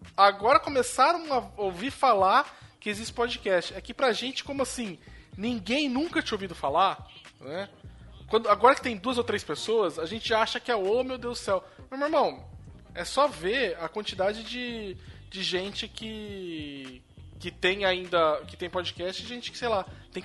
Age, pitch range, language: 20-39, 170-235 Hz, Portuguese